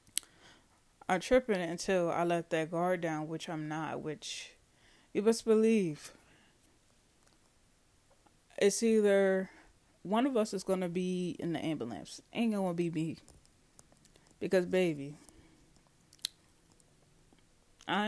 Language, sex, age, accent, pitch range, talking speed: English, female, 20-39, American, 160-190 Hz, 120 wpm